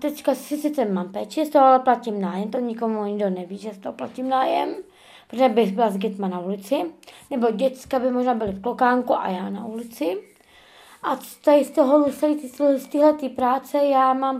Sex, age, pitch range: female, 20-39, 235-275 Hz